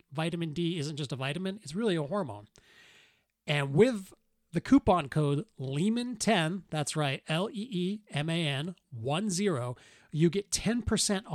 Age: 30-49